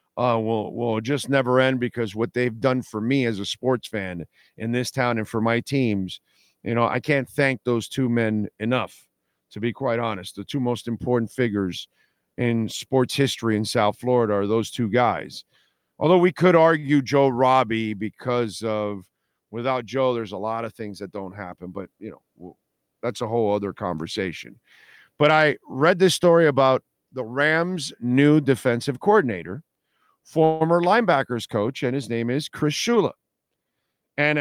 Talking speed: 170 wpm